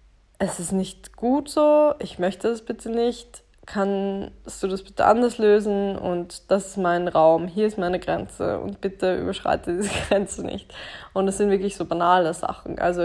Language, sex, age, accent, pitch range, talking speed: German, female, 20-39, German, 175-200 Hz, 180 wpm